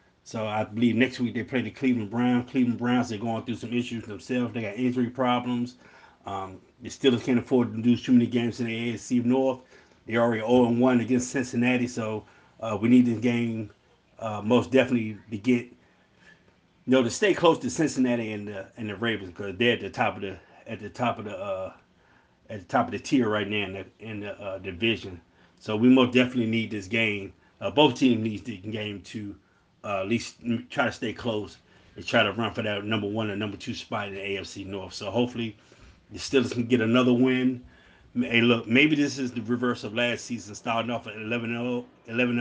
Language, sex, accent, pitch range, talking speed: English, male, American, 110-125 Hz, 210 wpm